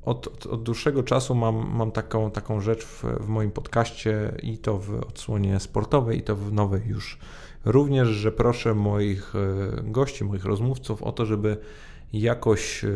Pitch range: 100-110 Hz